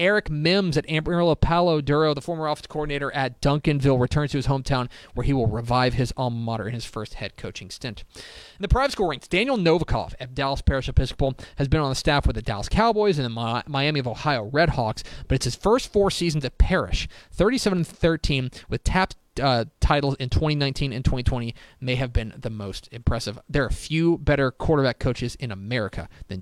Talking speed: 200 wpm